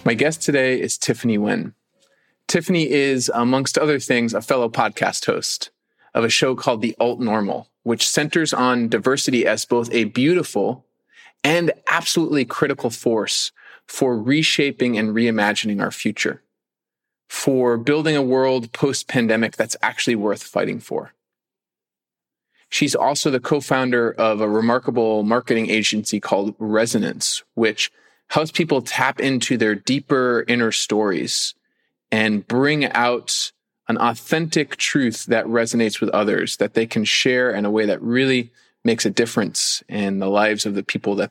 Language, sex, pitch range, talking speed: English, male, 110-135 Hz, 145 wpm